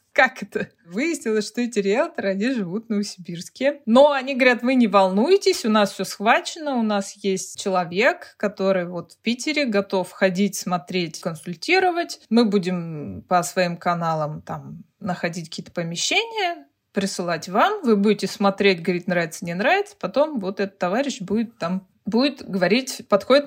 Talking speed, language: 150 wpm, Russian